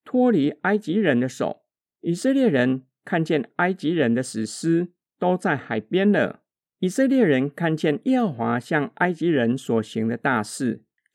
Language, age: Chinese, 50-69